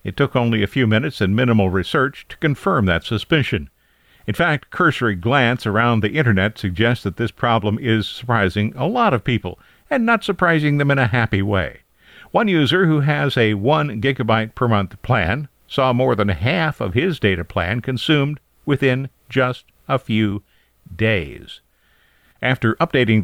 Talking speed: 165 wpm